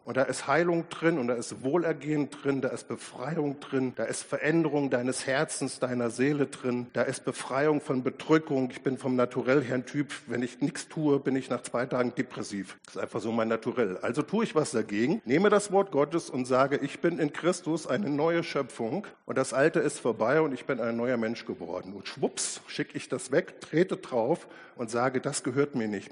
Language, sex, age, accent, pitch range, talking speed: German, male, 50-69, German, 125-155 Hz, 210 wpm